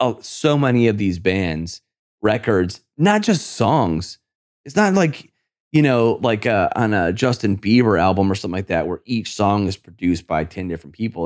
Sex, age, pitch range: male, 30-49, 95-140 Hz